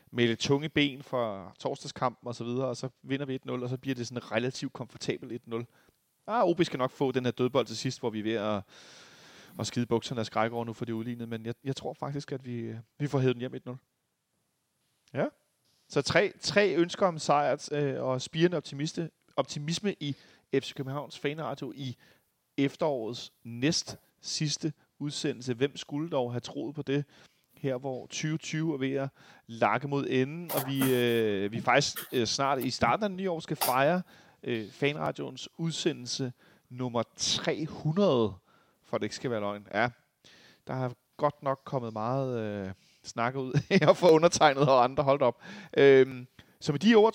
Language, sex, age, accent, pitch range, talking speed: Danish, male, 30-49, native, 120-150 Hz, 185 wpm